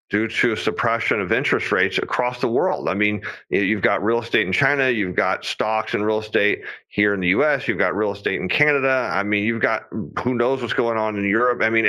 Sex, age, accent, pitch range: male, 40-59, American, 110-150 Hz